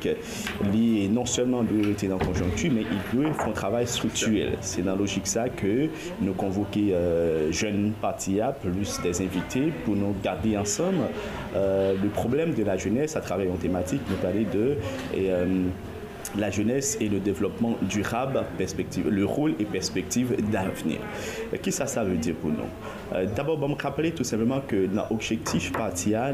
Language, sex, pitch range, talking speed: French, male, 95-120 Hz, 170 wpm